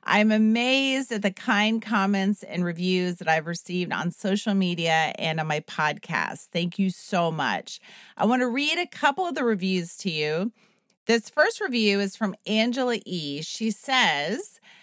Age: 40-59